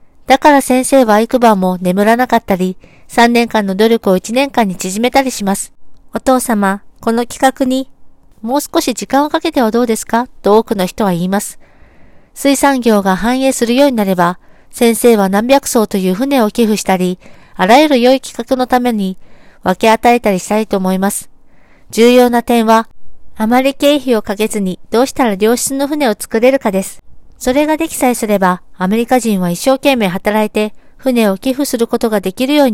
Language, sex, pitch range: Japanese, female, 205-260 Hz